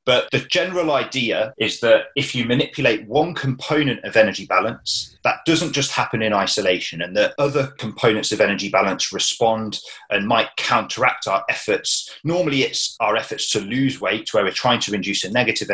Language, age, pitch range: English, 30-49, 105-140 Hz